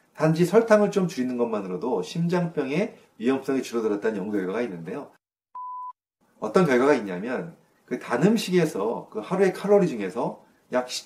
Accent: native